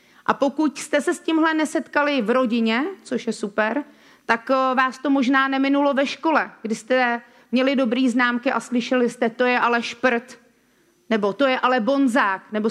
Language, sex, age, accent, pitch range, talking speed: Czech, female, 40-59, native, 225-265 Hz, 175 wpm